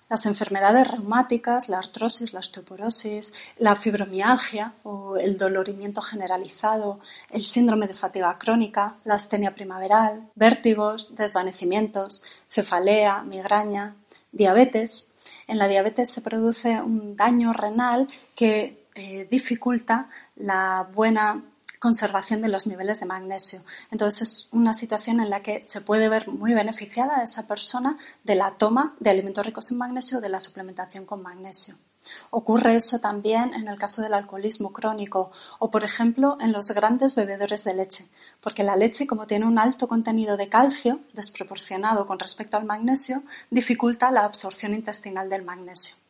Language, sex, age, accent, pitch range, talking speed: Spanish, female, 30-49, Spanish, 200-230 Hz, 145 wpm